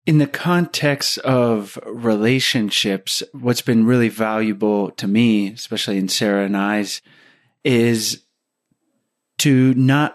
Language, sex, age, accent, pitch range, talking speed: English, male, 30-49, American, 105-125 Hz, 110 wpm